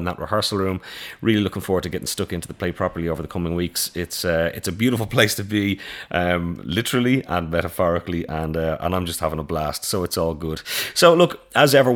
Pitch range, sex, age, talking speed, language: 90-115 Hz, male, 30-49, 230 wpm, English